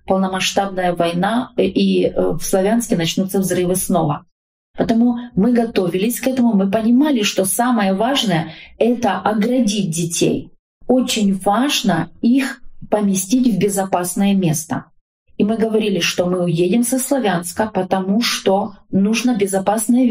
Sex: female